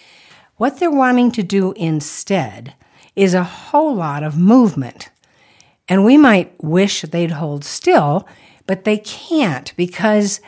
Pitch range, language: 155-215 Hz, English